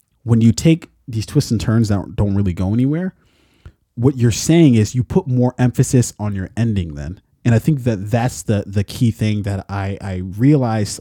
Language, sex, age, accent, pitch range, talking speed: English, male, 20-39, American, 100-130 Hz, 200 wpm